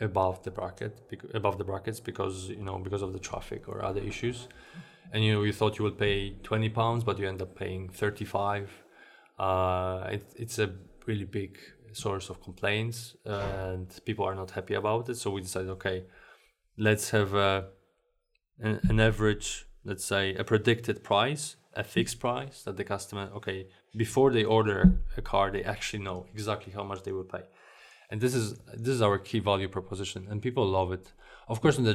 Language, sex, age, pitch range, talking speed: English, male, 20-39, 95-110 Hz, 190 wpm